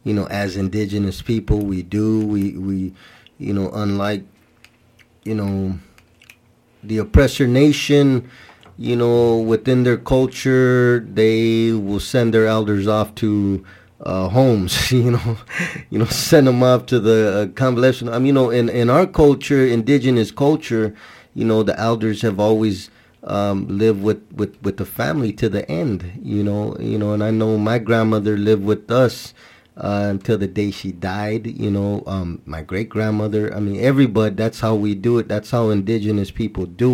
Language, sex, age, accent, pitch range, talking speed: English, male, 20-39, American, 100-120 Hz, 170 wpm